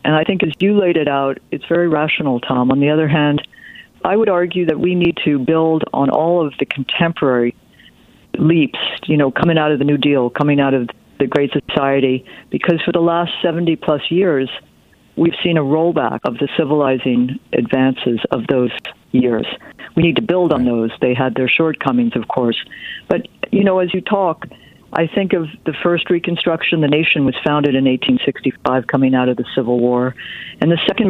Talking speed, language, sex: 195 wpm, English, female